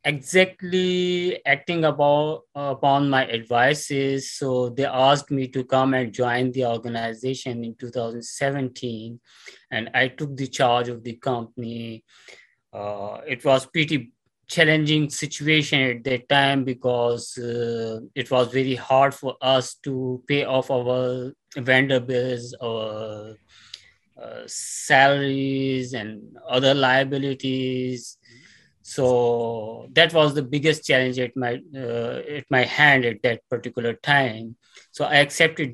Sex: male